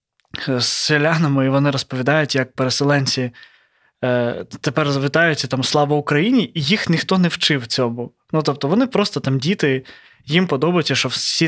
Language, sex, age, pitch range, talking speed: Ukrainian, male, 20-39, 140-185 Hz, 145 wpm